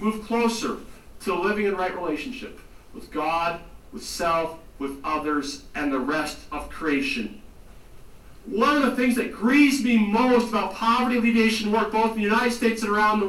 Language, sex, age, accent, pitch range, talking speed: English, male, 50-69, American, 175-245 Hz, 170 wpm